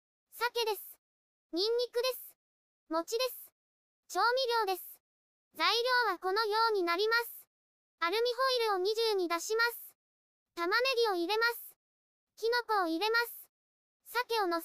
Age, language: 20-39, Japanese